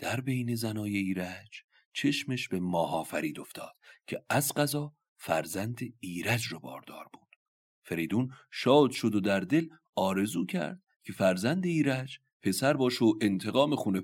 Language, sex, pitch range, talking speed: Persian, male, 90-125 Hz, 140 wpm